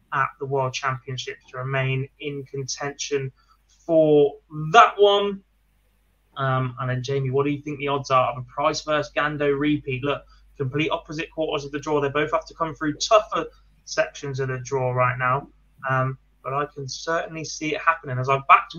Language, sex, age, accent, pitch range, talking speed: English, male, 20-39, British, 135-165 Hz, 190 wpm